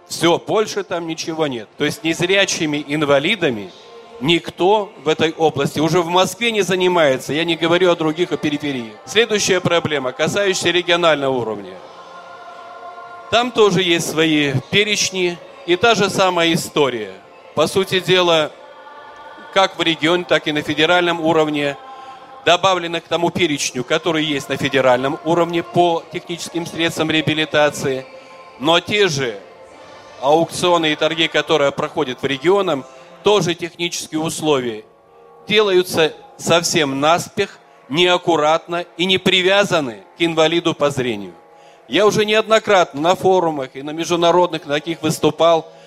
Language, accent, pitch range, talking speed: Russian, native, 150-180 Hz, 130 wpm